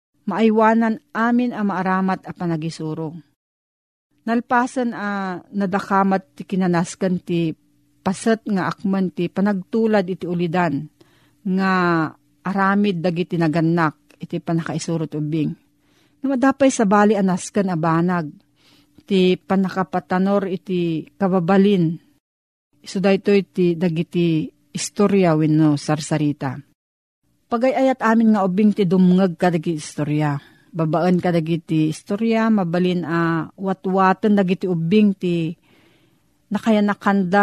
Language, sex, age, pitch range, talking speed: Filipino, female, 50-69, 165-205 Hz, 95 wpm